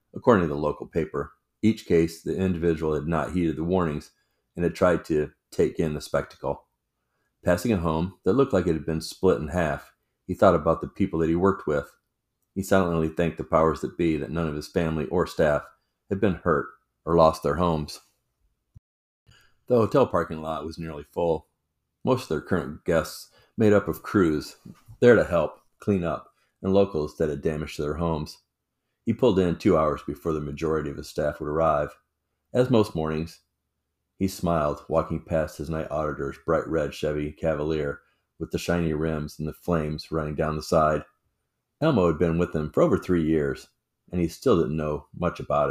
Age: 40-59